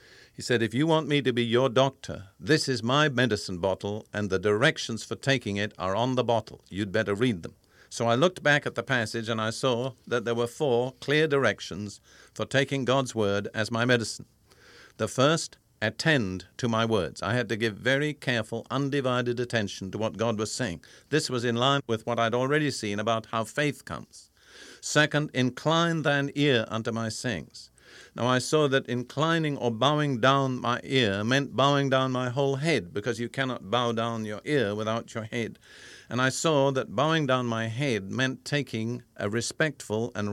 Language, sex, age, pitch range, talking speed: English, male, 50-69, 110-135 Hz, 195 wpm